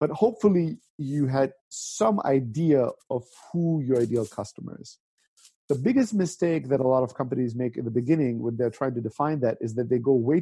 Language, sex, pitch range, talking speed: English, male, 125-170 Hz, 200 wpm